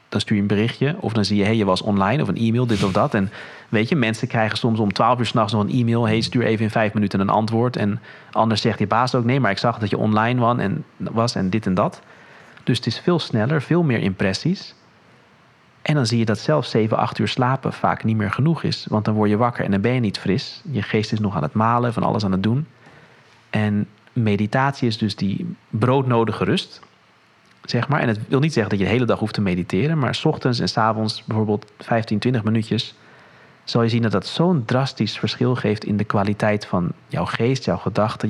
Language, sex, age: English, male, 40-59